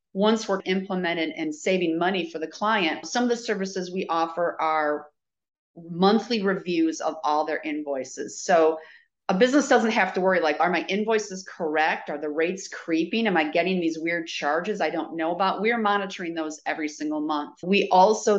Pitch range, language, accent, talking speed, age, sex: 160-200 Hz, English, American, 185 wpm, 40-59, female